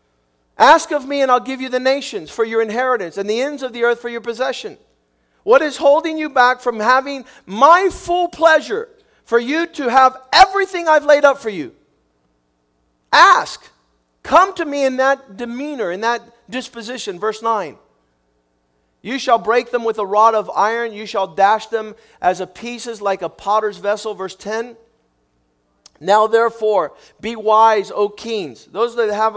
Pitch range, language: 200-255 Hz, English